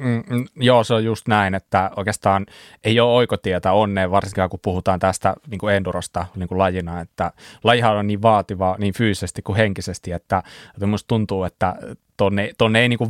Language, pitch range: Finnish, 100-120 Hz